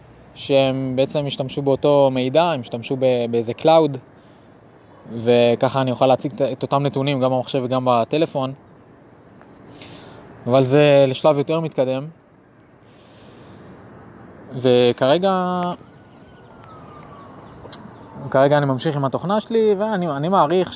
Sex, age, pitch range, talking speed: male, 20-39, 125-150 Hz, 100 wpm